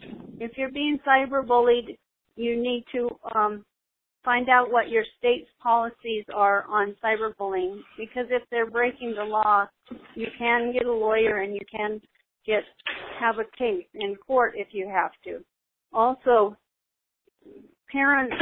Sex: female